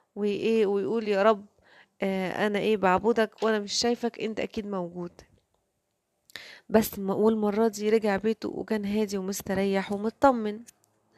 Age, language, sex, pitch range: 20-39, Arabic, female, 200-230 Hz